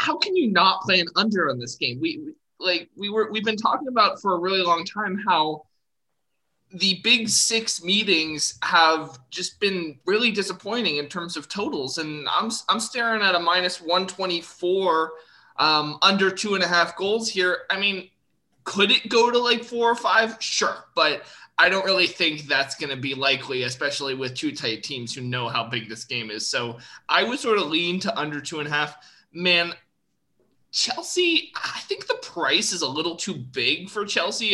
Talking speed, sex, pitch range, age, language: 195 wpm, male, 145-205 Hz, 20-39, English